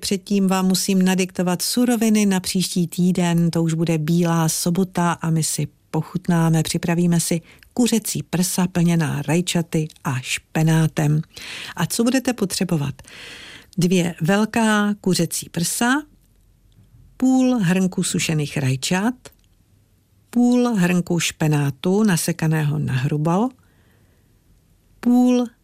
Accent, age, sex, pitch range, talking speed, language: native, 50-69, female, 155-190 Hz, 105 wpm, Czech